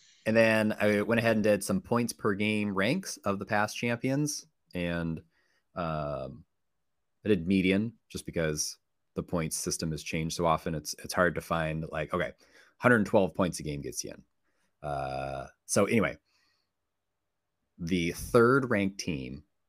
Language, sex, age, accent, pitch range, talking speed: English, male, 30-49, American, 85-105 Hz, 150 wpm